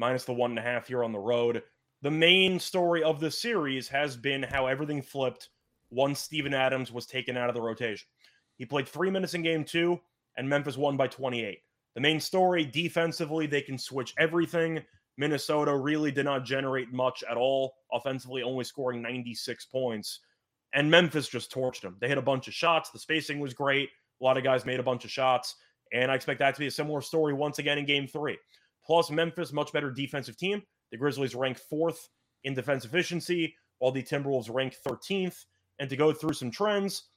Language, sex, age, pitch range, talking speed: English, male, 20-39, 130-155 Hz, 200 wpm